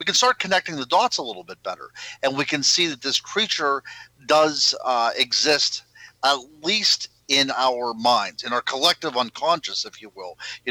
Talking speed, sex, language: 185 wpm, male, English